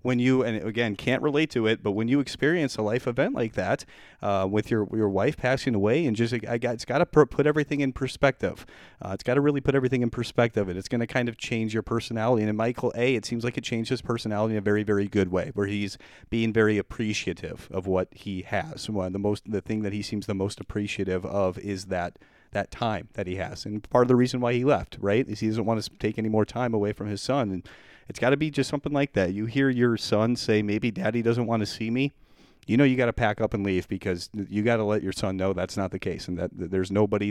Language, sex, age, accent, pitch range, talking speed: English, male, 30-49, American, 100-125 Hz, 270 wpm